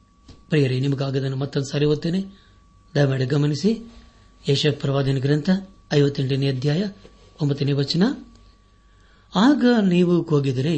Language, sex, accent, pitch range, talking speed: Kannada, male, native, 105-155 Hz, 80 wpm